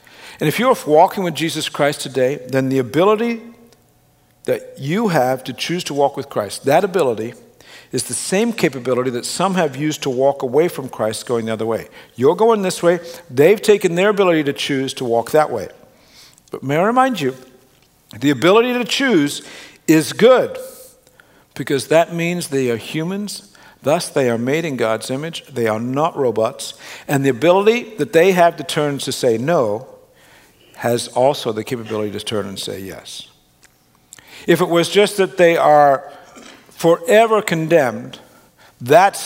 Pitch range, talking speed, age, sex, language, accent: 125-170 Hz, 170 wpm, 60-79, male, English, American